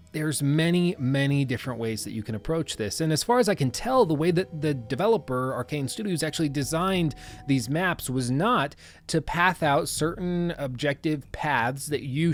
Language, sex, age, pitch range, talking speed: English, male, 30-49, 120-155 Hz, 185 wpm